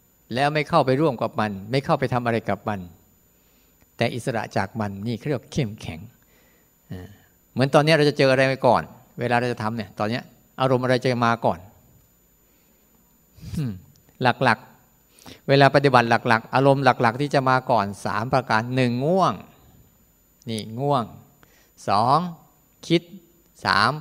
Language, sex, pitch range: Thai, male, 110-145 Hz